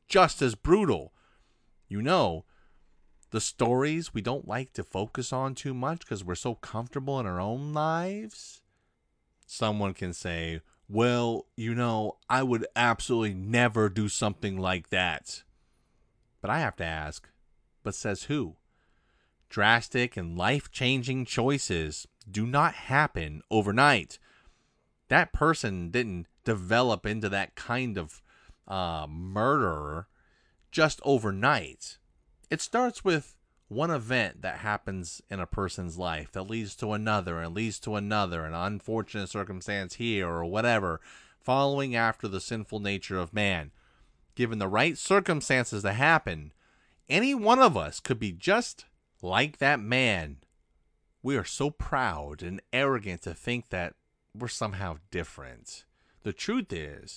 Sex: male